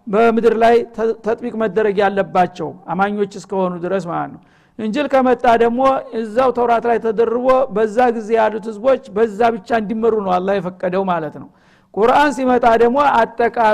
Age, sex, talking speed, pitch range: 60-79, male, 130 wpm, 210-245 Hz